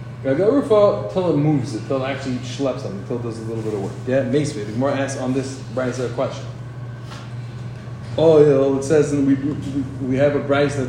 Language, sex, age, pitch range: English, male, 20-39, 120-160 Hz